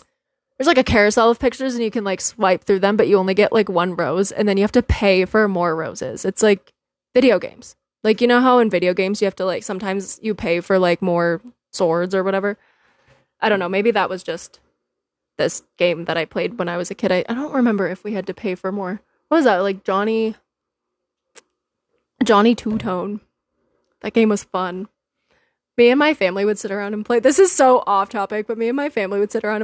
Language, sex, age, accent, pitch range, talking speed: English, female, 20-39, American, 195-255 Hz, 230 wpm